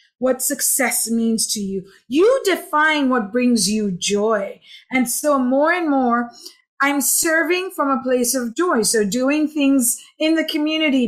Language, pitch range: English, 245-310 Hz